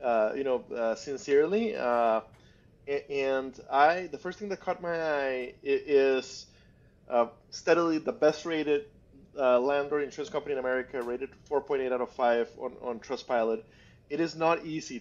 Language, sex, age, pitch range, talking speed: English, male, 30-49, 120-155 Hz, 155 wpm